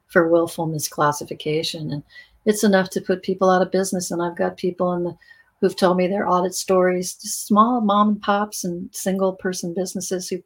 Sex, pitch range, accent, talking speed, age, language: female, 165-195 Hz, American, 170 wpm, 50-69, English